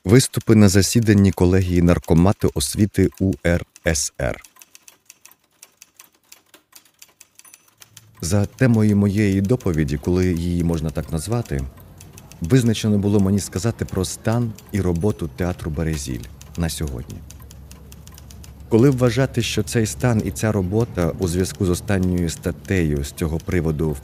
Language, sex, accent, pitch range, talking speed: Ukrainian, male, native, 80-110 Hz, 110 wpm